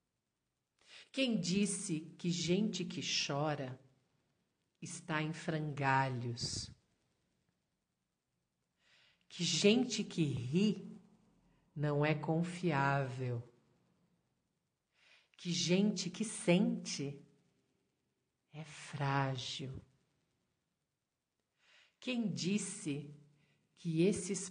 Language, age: Portuguese, 50-69